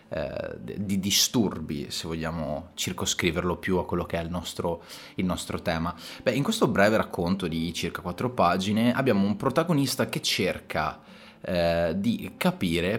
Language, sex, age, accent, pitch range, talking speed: Italian, male, 30-49, native, 90-125 Hz, 150 wpm